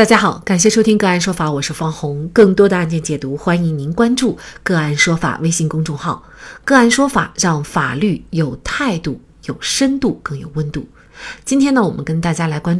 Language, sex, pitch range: Chinese, female, 155-230 Hz